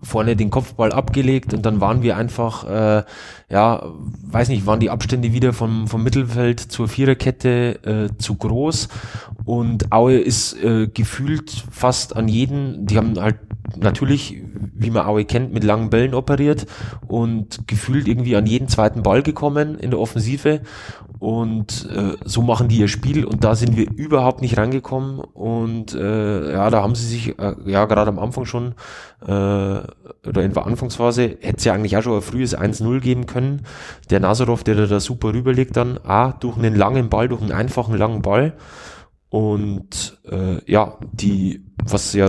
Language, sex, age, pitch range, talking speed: German, male, 20-39, 105-125 Hz, 170 wpm